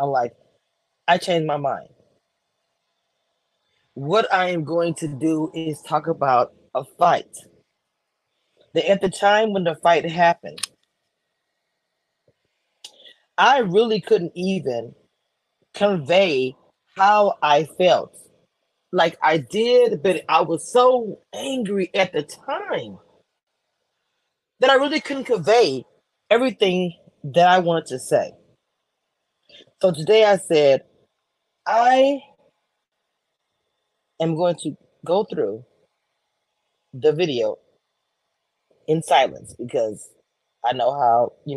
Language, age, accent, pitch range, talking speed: English, 30-49, American, 160-215 Hz, 105 wpm